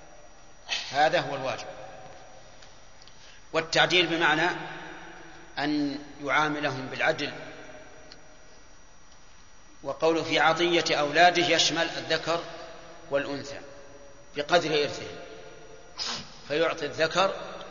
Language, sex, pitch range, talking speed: Arabic, male, 140-165 Hz, 65 wpm